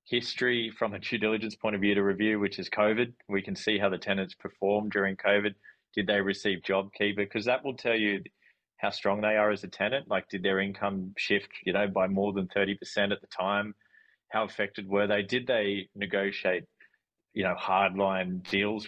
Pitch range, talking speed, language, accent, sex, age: 95-105 Hz, 200 wpm, English, Australian, male, 20-39